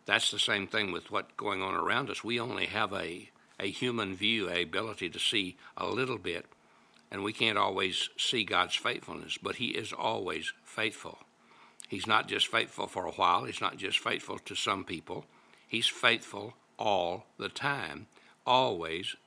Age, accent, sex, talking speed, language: 60-79, American, male, 175 wpm, English